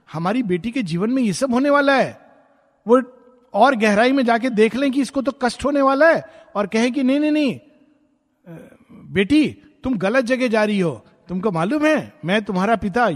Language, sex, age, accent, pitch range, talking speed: Hindi, male, 50-69, native, 185-250 Hz, 195 wpm